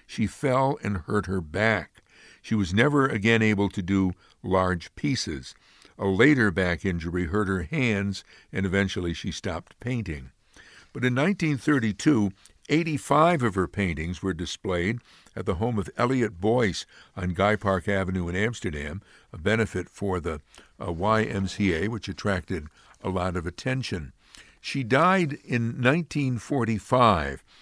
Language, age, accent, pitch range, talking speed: English, 60-79, American, 95-125 Hz, 140 wpm